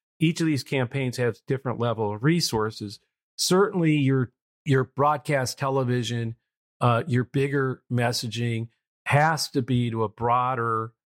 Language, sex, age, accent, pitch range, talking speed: English, male, 40-59, American, 110-135 Hz, 130 wpm